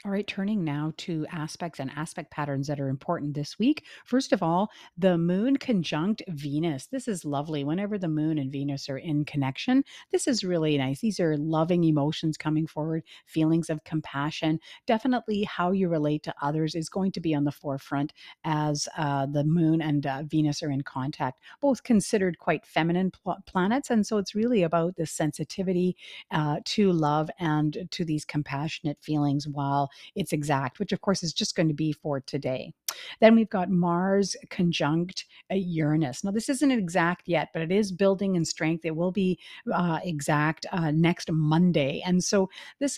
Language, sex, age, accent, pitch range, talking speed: English, female, 50-69, American, 150-185 Hz, 180 wpm